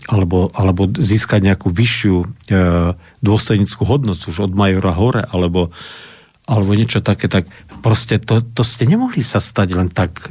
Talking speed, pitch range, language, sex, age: 150 wpm, 100-125 Hz, Slovak, male, 50-69